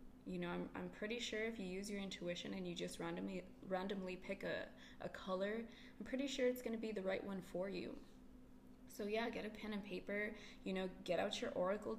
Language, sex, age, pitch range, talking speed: English, female, 20-39, 190-230 Hz, 220 wpm